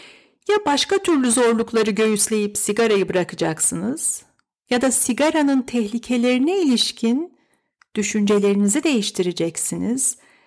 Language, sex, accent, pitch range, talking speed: Turkish, female, native, 215-285 Hz, 80 wpm